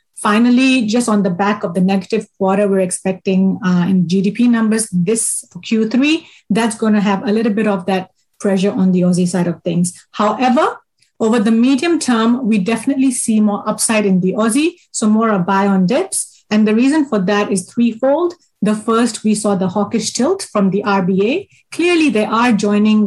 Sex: female